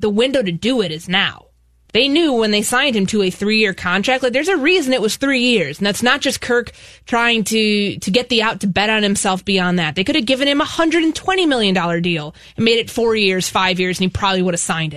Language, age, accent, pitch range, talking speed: English, 20-39, American, 185-225 Hz, 255 wpm